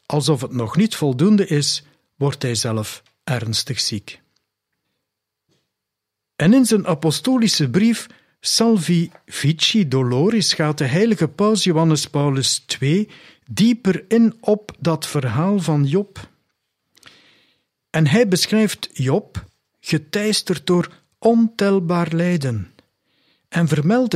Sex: male